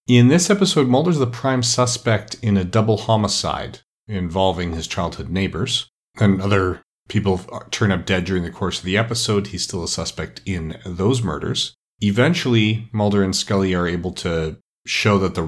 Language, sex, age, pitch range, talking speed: English, male, 40-59, 90-105 Hz, 170 wpm